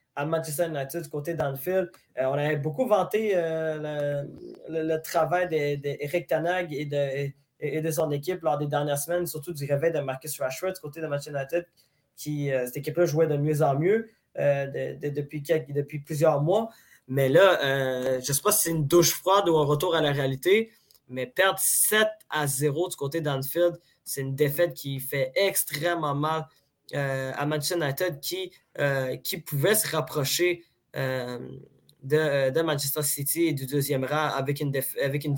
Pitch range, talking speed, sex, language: 140-170 Hz, 195 wpm, male, French